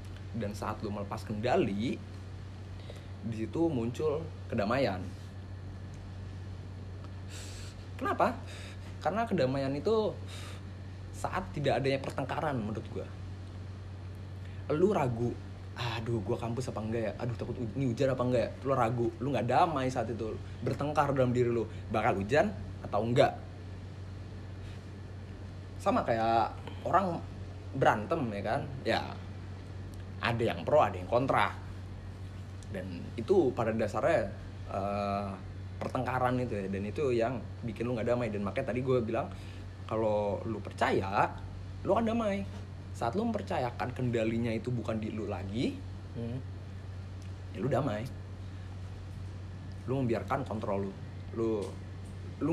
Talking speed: 120 wpm